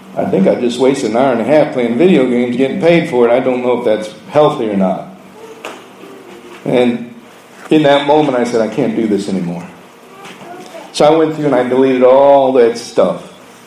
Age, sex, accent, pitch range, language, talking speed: 50-69, male, American, 135-225 Hz, English, 200 wpm